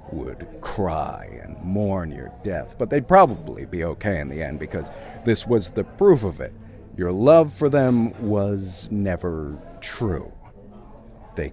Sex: male